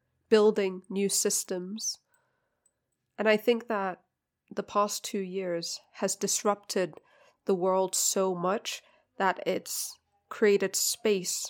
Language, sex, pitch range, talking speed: English, female, 185-205 Hz, 110 wpm